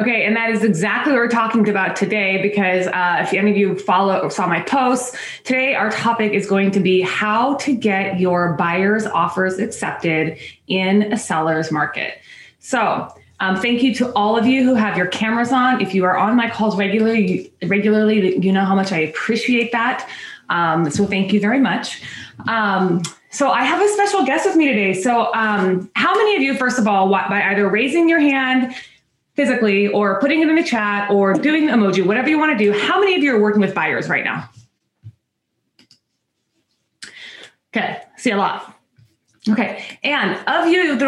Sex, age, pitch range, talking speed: female, 20-39, 195-250 Hz, 195 wpm